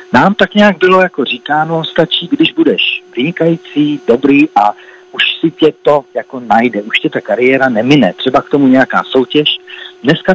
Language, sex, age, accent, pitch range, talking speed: Czech, male, 40-59, native, 120-175 Hz, 170 wpm